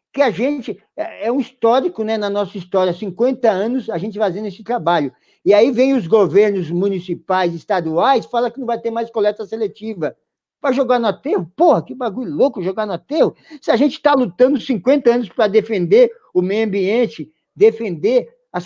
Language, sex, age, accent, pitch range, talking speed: Portuguese, male, 50-69, Brazilian, 185-235 Hz, 185 wpm